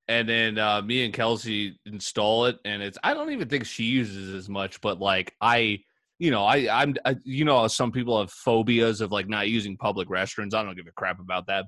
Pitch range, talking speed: 105-130 Hz, 220 wpm